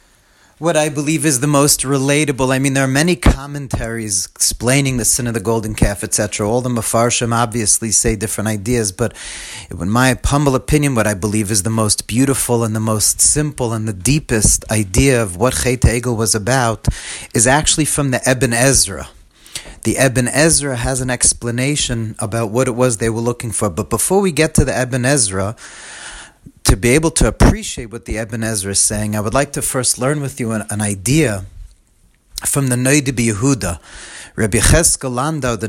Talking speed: 185 wpm